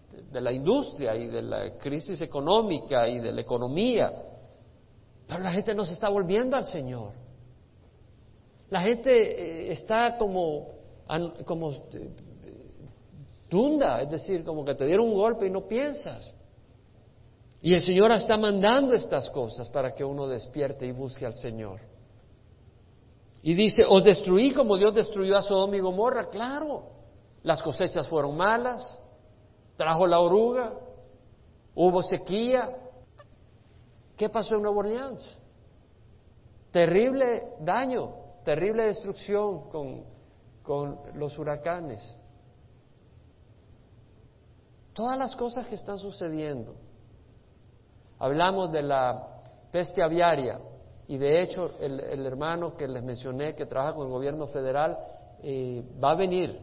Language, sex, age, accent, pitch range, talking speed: Spanish, male, 50-69, Mexican, 115-195 Hz, 125 wpm